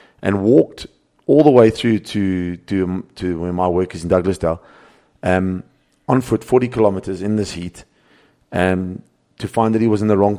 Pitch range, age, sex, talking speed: 85-105 Hz, 30-49, male, 185 wpm